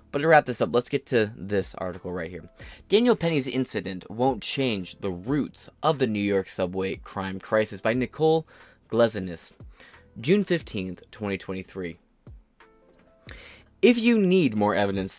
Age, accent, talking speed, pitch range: 20-39, American, 145 wpm, 95-135 Hz